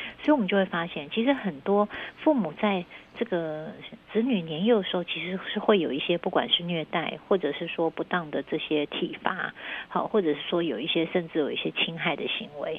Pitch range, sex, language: 165-210 Hz, female, Chinese